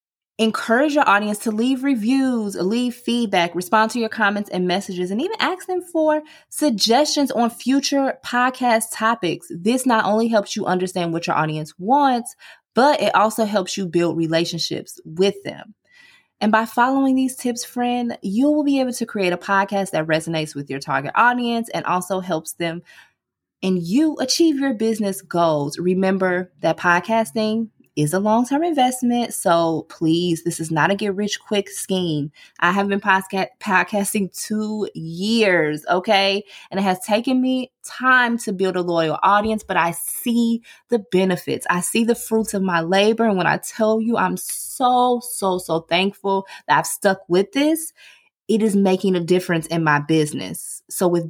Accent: American